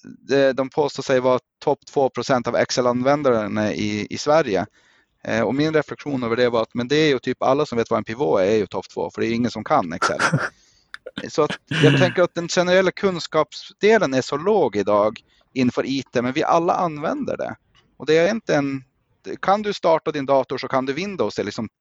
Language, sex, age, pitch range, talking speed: Swedish, male, 30-49, 120-155 Hz, 215 wpm